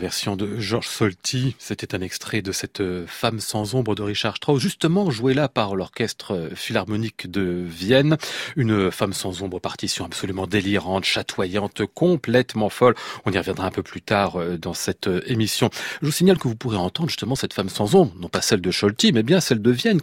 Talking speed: 195 wpm